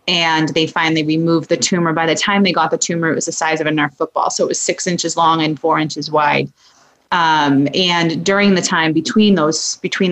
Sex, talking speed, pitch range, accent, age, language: female, 230 wpm, 160-190 Hz, American, 30-49, English